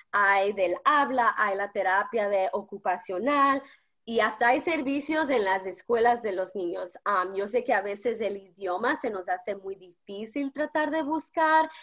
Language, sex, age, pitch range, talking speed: English, female, 20-39, 200-260 Hz, 170 wpm